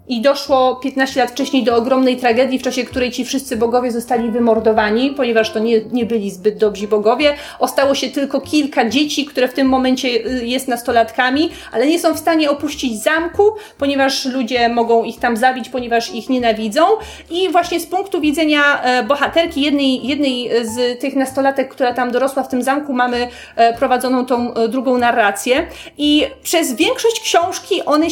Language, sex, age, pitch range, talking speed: Polish, female, 30-49, 240-290 Hz, 165 wpm